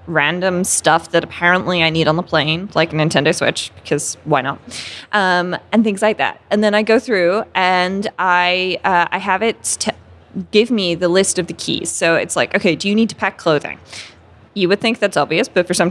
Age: 20-39